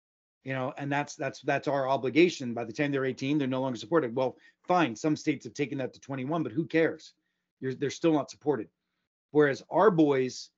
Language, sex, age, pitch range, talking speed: English, male, 40-59, 120-150 Hz, 210 wpm